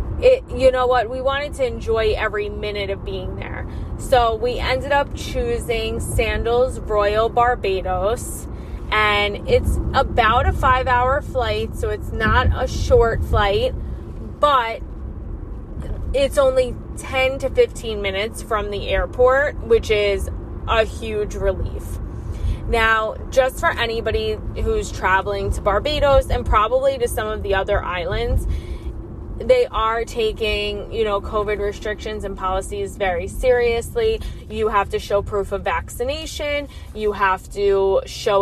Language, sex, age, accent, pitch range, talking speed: English, female, 20-39, American, 190-260 Hz, 135 wpm